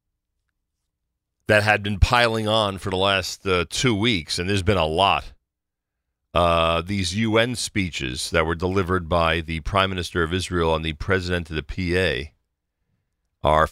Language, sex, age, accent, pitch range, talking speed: English, male, 40-59, American, 80-100 Hz, 155 wpm